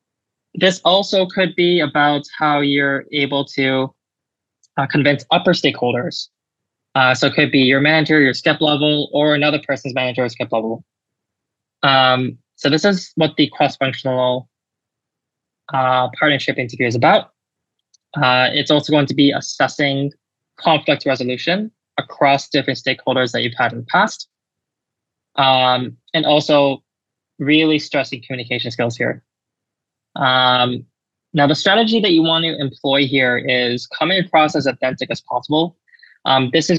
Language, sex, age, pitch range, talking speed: English, male, 20-39, 125-150 Hz, 140 wpm